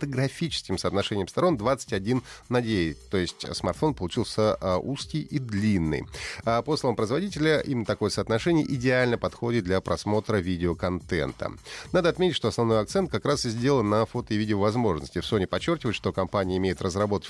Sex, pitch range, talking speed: male, 95-125 Hz, 165 wpm